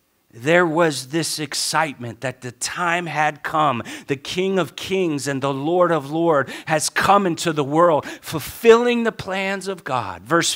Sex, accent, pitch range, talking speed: male, American, 150-205 Hz, 165 wpm